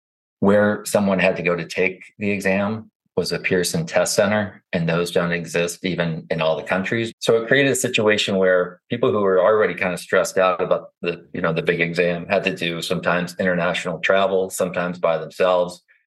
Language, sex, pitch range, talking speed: English, male, 85-95 Hz, 200 wpm